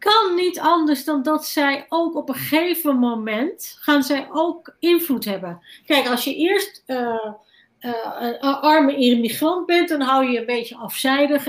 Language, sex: English, female